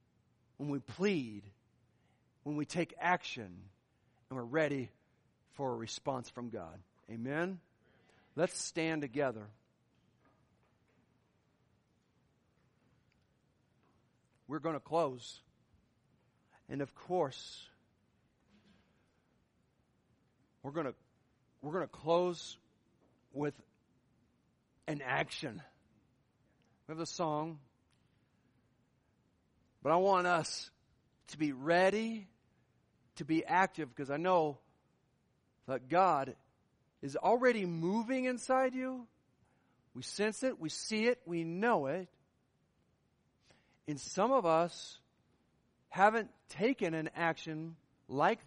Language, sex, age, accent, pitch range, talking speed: English, male, 50-69, American, 120-170 Hz, 95 wpm